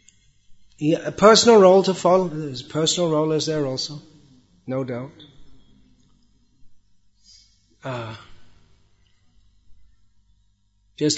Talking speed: 85 wpm